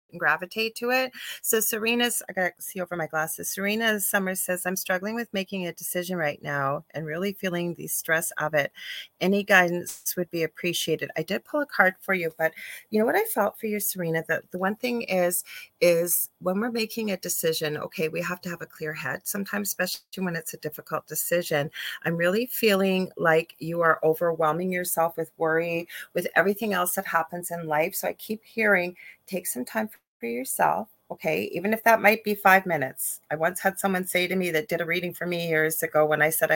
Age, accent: 40-59, American